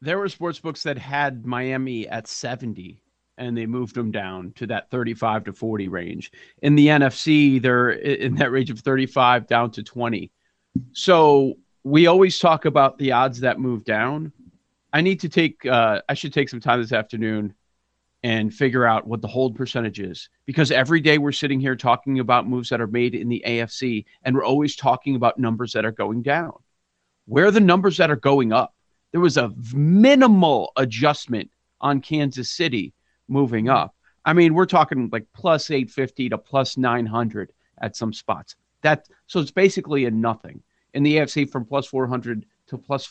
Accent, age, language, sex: American, 40-59, English, male